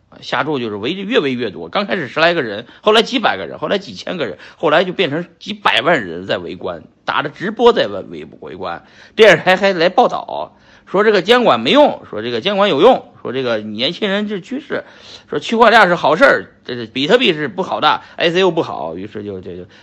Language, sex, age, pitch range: Chinese, male, 50-69, 130-200 Hz